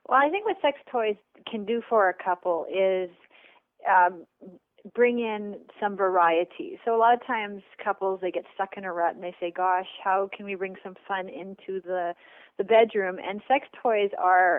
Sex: female